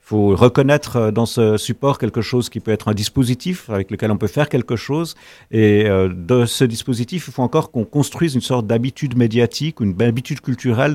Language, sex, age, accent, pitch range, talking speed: French, male, 50-69, French, 105-130 Hz, 190 wpm